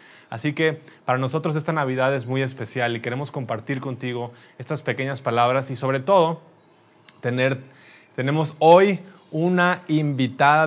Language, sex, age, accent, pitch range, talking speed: Spanish, male, 20-39, Mexican, 125-155 Hz, 130 wpm